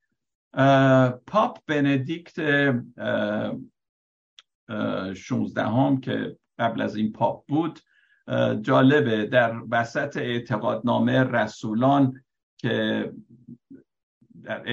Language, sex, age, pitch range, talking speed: Persian, male, 60-79, 115-145 Hz, 85 wpm